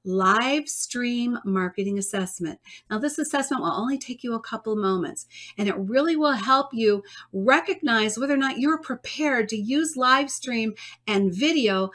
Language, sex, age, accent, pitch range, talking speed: English, female, 50-69, American, 210-275 Hz, 165 wpm